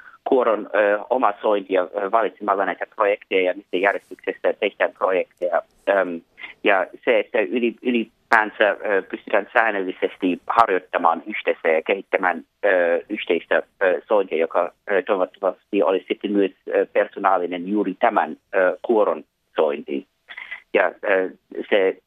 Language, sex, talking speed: Finnish, male, 110 wpm